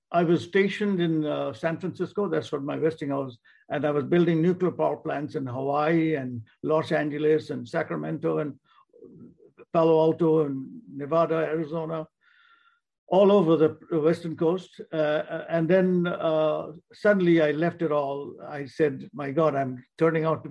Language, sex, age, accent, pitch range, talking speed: English, male, 50-69, Indian, 145-180 Hz, 160 wpm